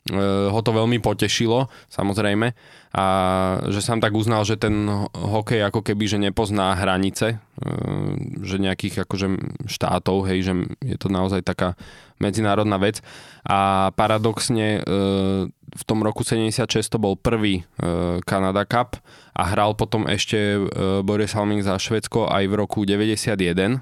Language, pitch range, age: Slovak, 95-110 Hz, 20-39